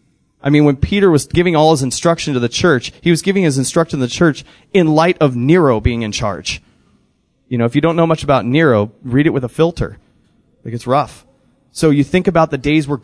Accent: American